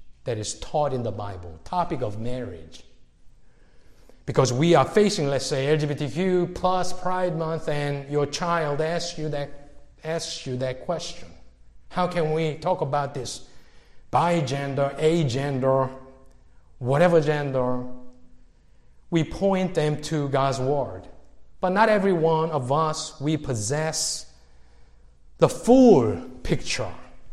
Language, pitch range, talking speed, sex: English, 130-180 Hz, 120 wpm, male